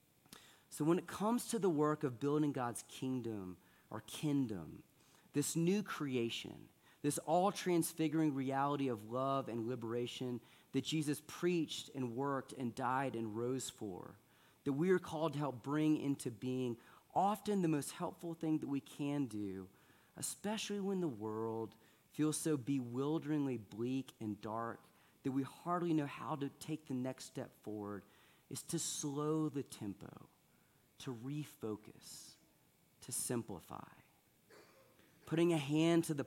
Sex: male